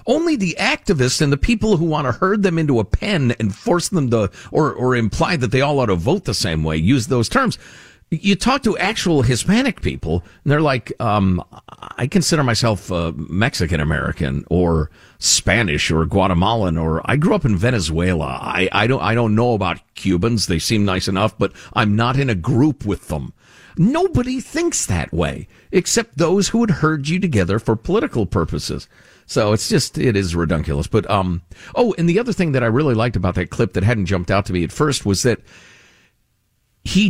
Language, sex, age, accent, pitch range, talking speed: English, male, 50-69, American, 95-155 Hz, 200 wpm